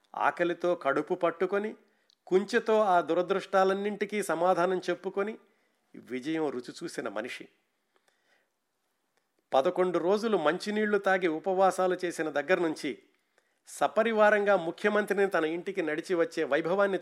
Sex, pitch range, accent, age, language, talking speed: male, 140-195 Hz, native, 50-69, Telugu, 95 wpm